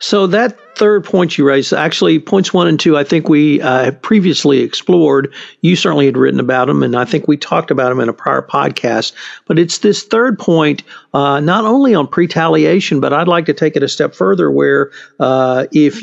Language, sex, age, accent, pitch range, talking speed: English, male, 50-69, American, 130-170 Hz, 215 wpm